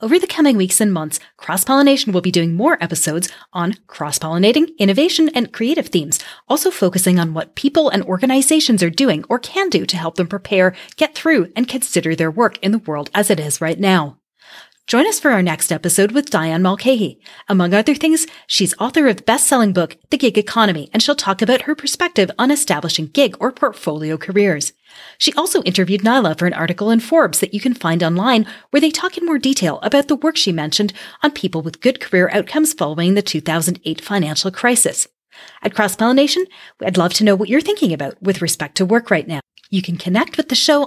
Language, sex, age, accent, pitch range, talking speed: English, female, 30-49, American, 175-275 Hz, 205 wpm